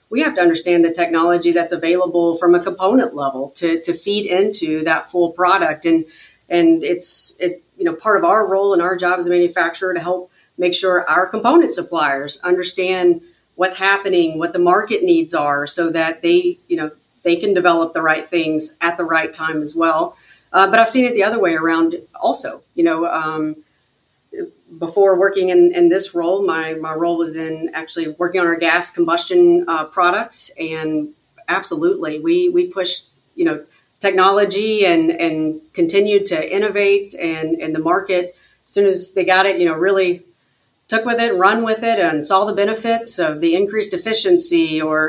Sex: female